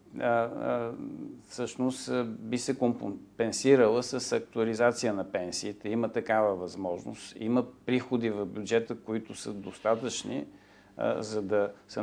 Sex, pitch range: male, 105-130 Hz